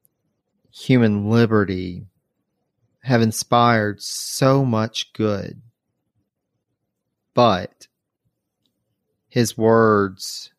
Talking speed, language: 55 wpm, English